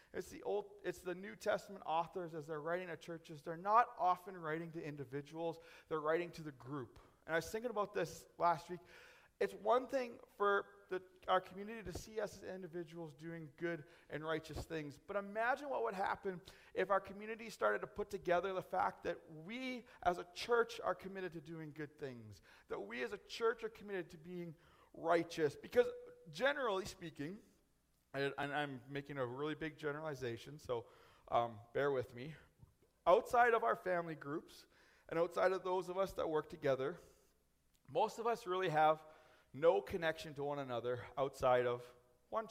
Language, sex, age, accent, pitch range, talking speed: English, male, 30-49, American, 155-220 Hz, 180 wpm